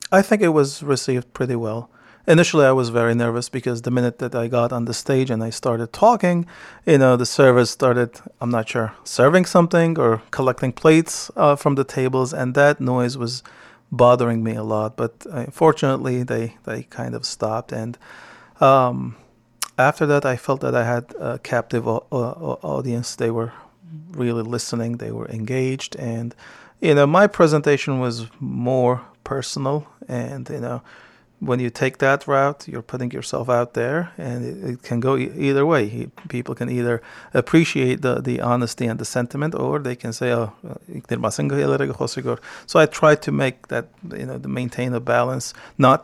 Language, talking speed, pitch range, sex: English, 180 wpm, 115-140 Hz, male